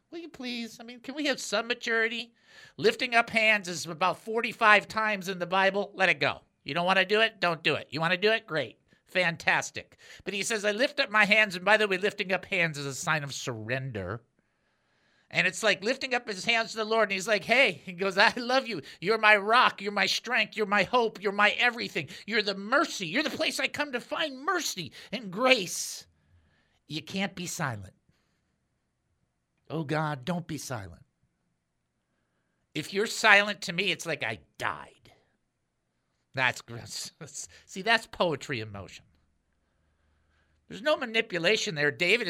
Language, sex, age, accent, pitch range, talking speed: English, male, 50-69, American, 155-225 Hz, 190 wpm